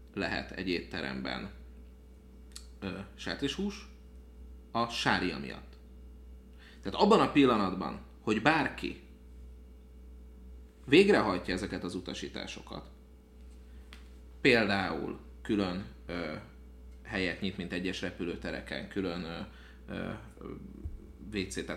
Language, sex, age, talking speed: Hungarian, male, 30-49, 75 wpm